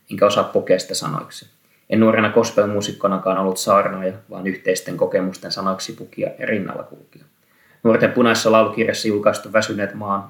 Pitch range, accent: 95-115 Hz, native